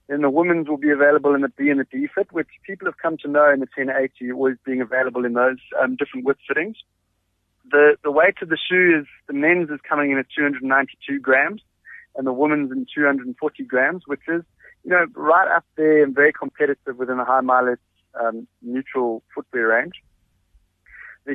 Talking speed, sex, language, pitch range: 200 wpm, male, English, 125-150 Hz